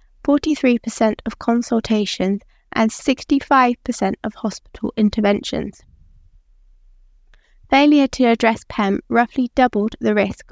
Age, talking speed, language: 20-39, 85 wpm, English